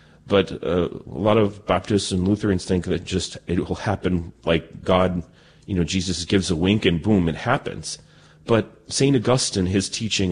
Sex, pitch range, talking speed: male, 85-115 Hz, 180 wpm